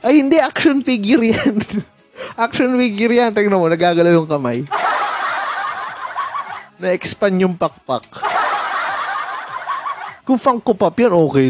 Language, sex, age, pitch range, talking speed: Filipino, male, 20-39, 155-220 Hz, 115 wpm